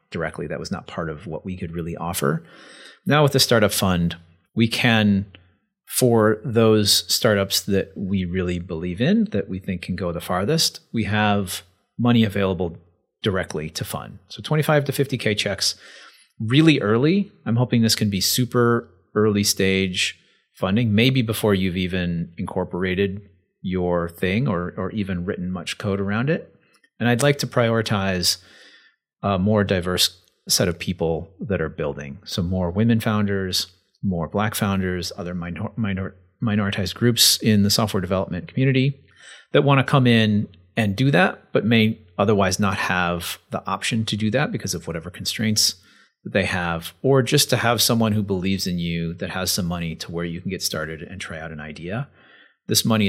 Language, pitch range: English, 90-115 Hz